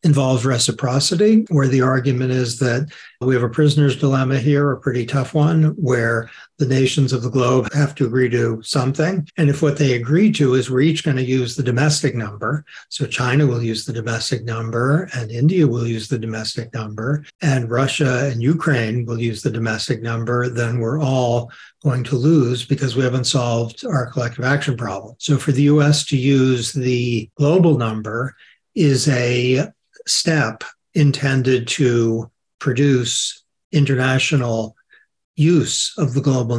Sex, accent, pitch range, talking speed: male, American, 120-145 Hz, 165 wpm